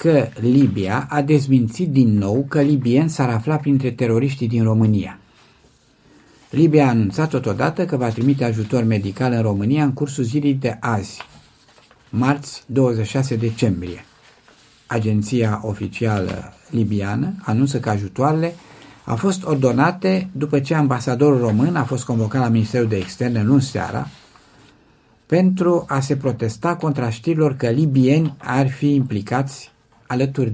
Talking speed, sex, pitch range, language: 135 wpm, male, 115-145 Hz, Romanian